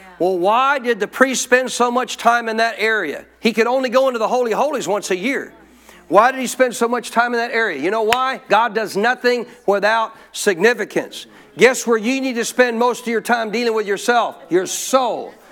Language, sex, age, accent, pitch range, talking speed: English, male, 50-69, American, 205-255 Hz, 215 wpm